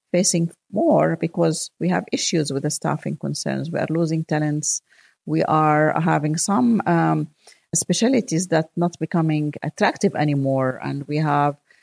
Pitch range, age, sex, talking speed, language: 145-175 Hz, 40-59, female, 140 wpm, English